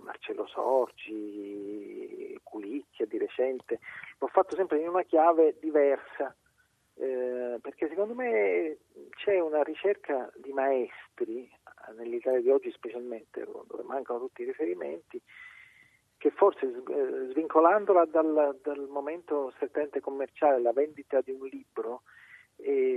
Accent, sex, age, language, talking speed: native, male, 40-59, Italian, 120 wpm